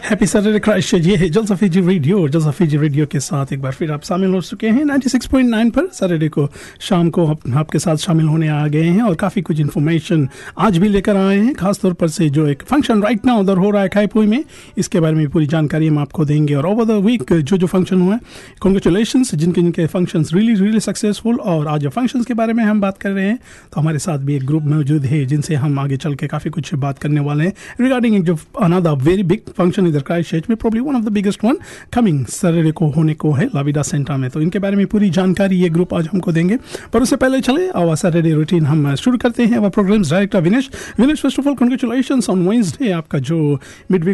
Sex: male